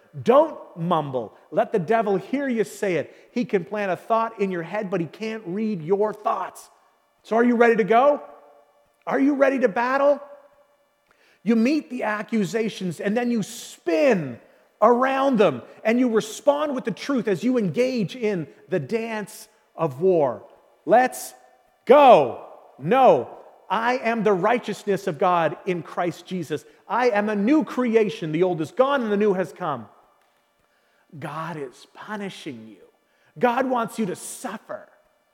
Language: English